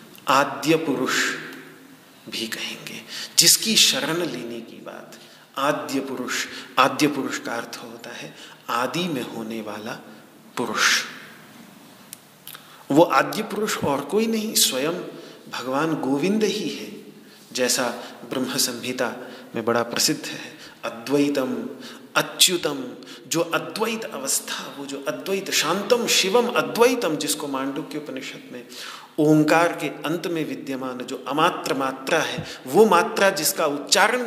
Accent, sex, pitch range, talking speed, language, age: native, male, 130-195 Hz, 125 wpm, Hindi, 40-59